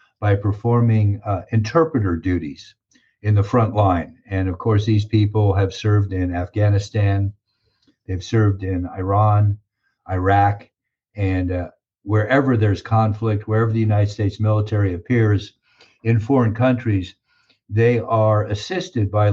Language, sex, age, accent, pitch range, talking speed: English, male, 50-69, American, 100-115 Hz, 125 wpm